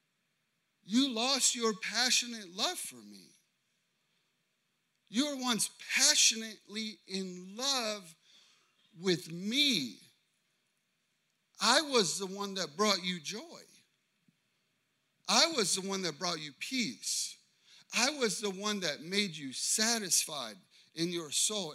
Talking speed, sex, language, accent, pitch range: 115 wpm, male, English, American, 175-245 Hz